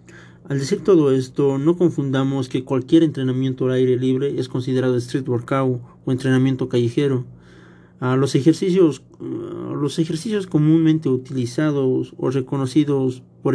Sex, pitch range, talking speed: male, 125-140 Hz, 125 wpm